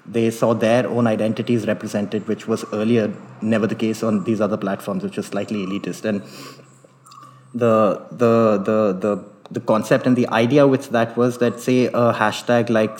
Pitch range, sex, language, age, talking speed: 105-120 Hz, male, English, 30-49, 175 wpm